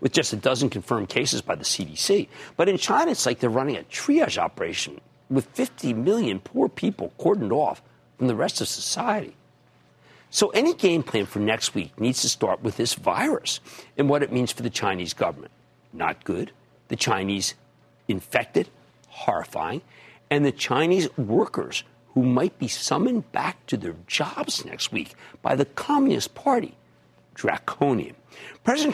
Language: English